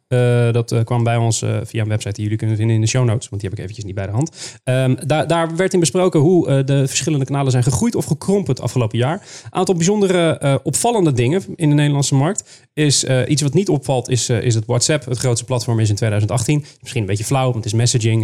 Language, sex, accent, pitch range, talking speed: Dutch, male, Dutch, 120-155 Hz, 260 wpm